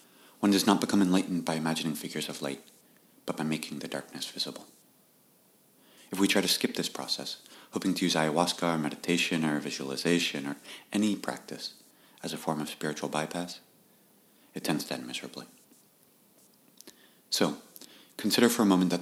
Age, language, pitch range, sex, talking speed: 30-49, English, 75-90 Hz, male, 160 wpm